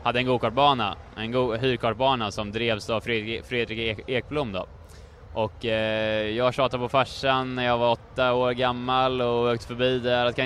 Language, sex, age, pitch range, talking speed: Swedish, male, 20-39, 115-135 Hz, 180 wpm